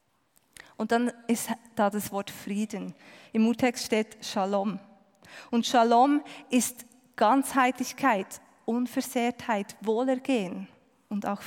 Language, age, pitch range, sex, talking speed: German, 20-39, 210-250 Hz, female, 100 wpm